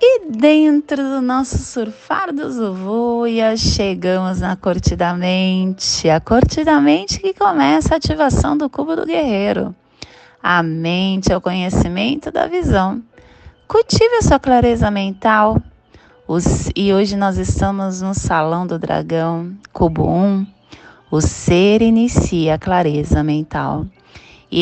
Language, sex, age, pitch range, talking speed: Portuguese, female, 20-39, 175-255 Hz, 125 wpm